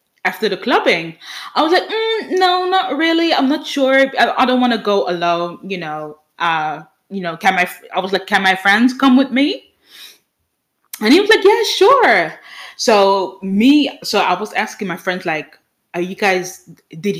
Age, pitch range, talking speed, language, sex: 20-39, 185-265 Hz, 190 wpm, English, female